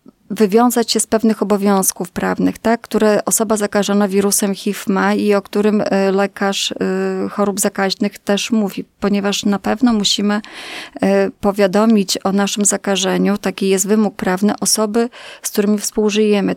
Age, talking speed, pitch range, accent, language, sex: 20-39, 135 wpm, 195-230 Hz, native, Polish, female